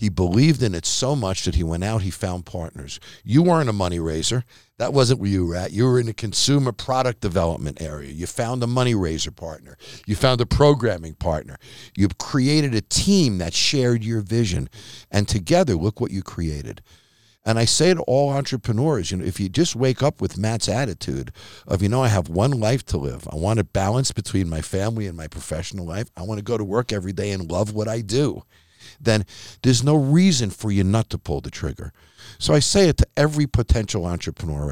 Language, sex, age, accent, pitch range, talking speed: English, male, 50-69, American, 90-130 Hz, 215 wpm